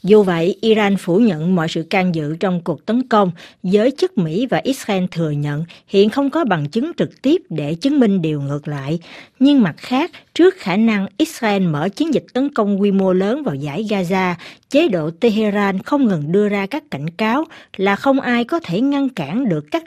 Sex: female